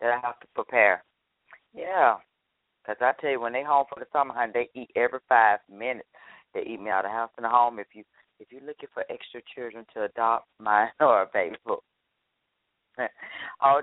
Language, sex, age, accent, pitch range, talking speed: English, female, 40-59, American, 120-150 Hz, 210 wpm